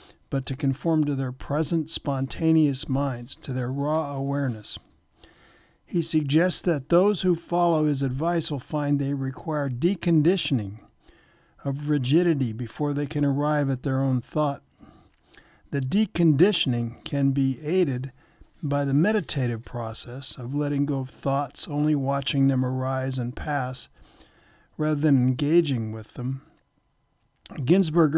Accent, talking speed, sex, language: American, 130 wpm, male, English